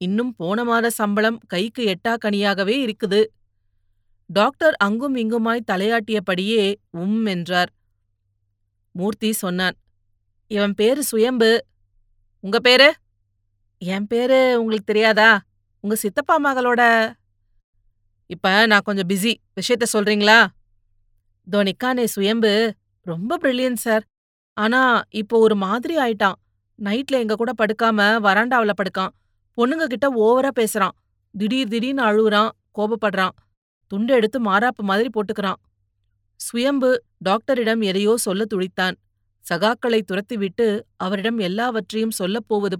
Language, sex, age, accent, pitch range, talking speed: Tamil, female, 30-49, native, 180-230 Hz, 100 wpm